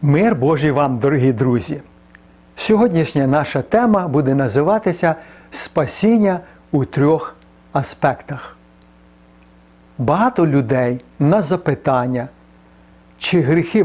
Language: Ukrainian